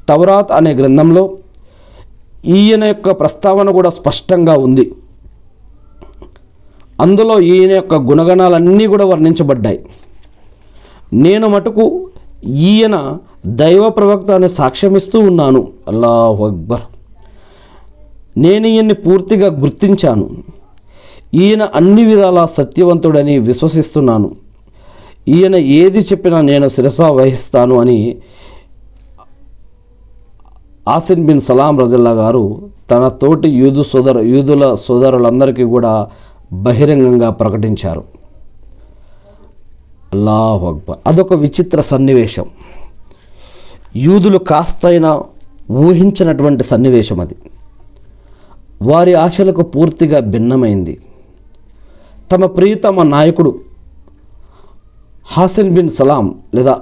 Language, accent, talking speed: Telugu, native, 80 wpm